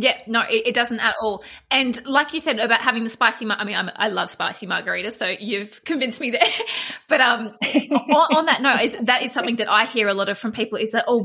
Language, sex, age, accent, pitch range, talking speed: English, female, 20-39, Australian, 220-275 Hz, 260 wpm